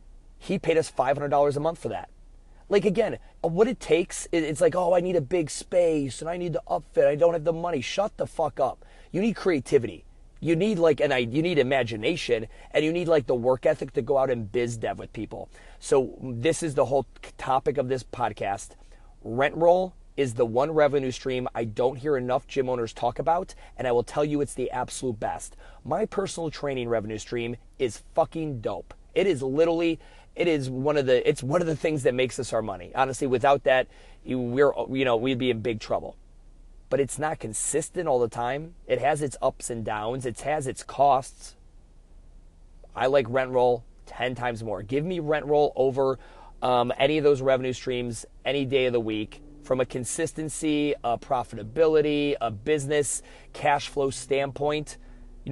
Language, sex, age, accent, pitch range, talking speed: English, male, 30-49, American, 125-155 Hz, 195 wpm